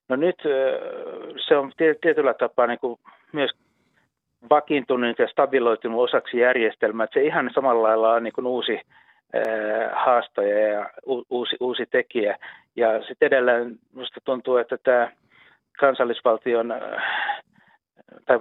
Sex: male